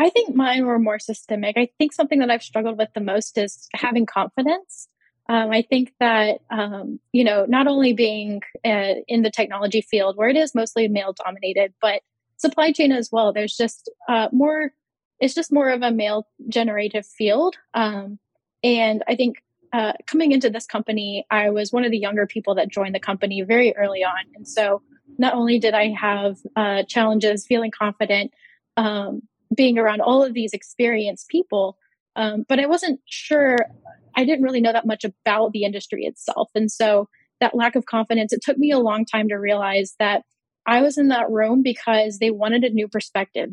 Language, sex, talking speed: English, female, 190 wpm